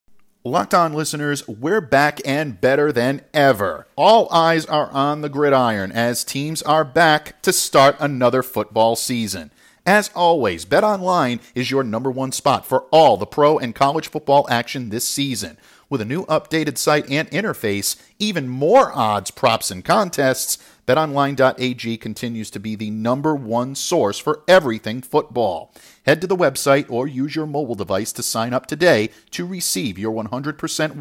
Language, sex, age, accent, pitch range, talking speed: English, male, 50-69, American, 120-165 Hz, 165 wpm